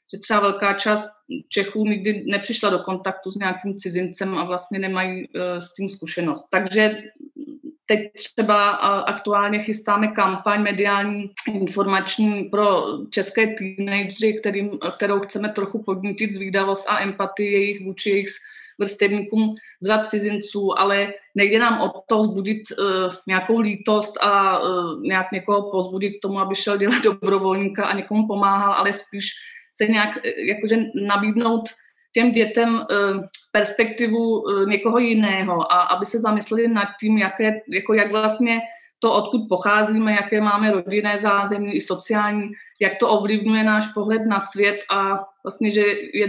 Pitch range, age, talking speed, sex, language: 195-215 Hz, 20-39, 135 wpm, female, Czech